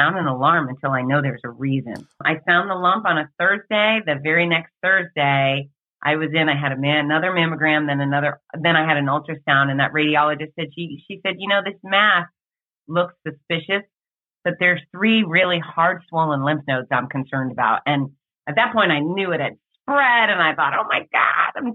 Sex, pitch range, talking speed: female, 145-180 Hz, 205 wpm